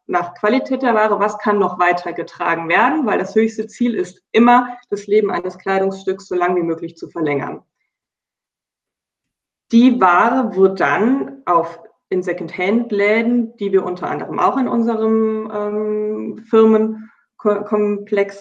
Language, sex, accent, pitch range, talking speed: German, female, German, 185-220 Hz, 135 wpm